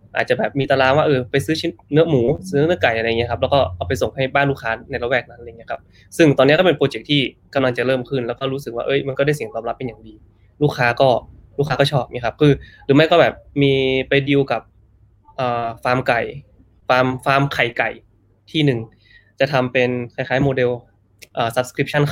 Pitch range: 115-140 Hz